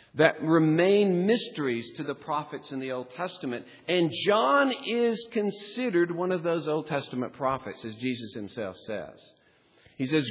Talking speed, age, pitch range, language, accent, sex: 150 wpm, 50-69, 120-165 Hz, English, American, male